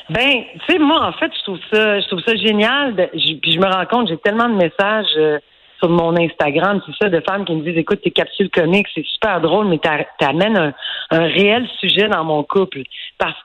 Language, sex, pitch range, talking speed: French, female, 160-210 Hz, 235 wpm